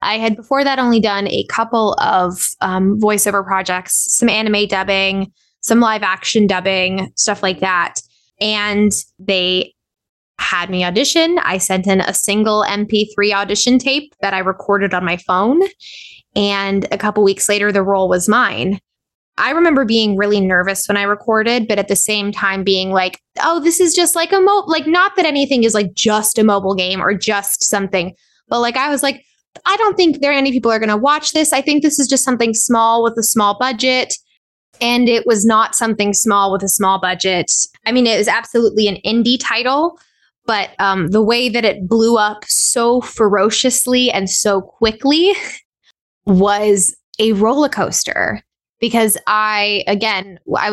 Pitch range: 195-240 Hz